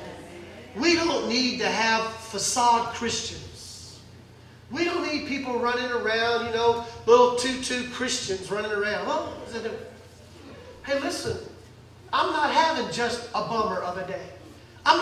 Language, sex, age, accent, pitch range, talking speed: English, male, 40-59, American, 225-320 Hz, 135 wpm